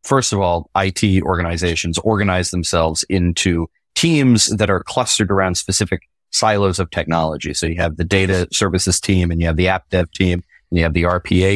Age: 30-49